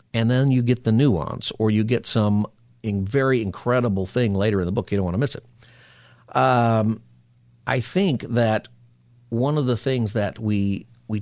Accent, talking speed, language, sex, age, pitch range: American, 185 wpm, English, male, 50-69, 100-120 Hz